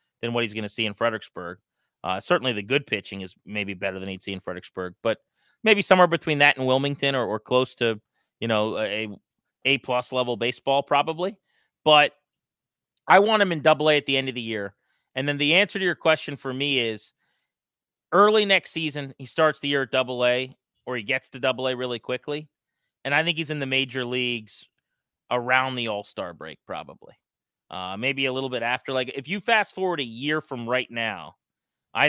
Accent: American